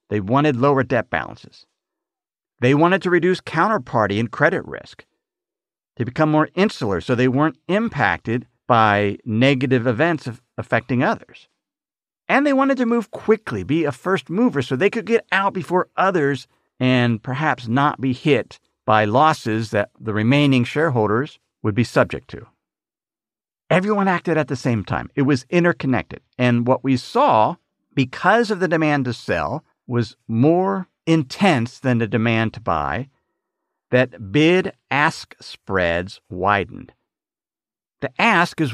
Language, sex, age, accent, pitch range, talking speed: English, male, 50-69, American, 115-155 Hz, 145 wpm